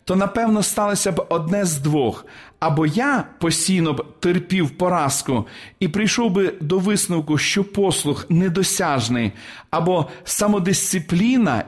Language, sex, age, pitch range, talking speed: Ukrainian, male, 40-59, 155-205 Hz, 120 wpm